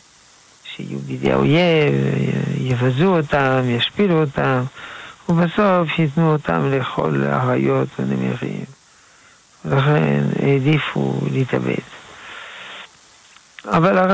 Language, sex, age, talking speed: Hebrew, male, 50-69, 70 wpm